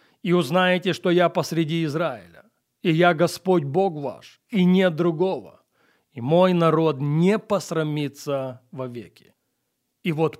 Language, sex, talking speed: Russian, male, 135 wpm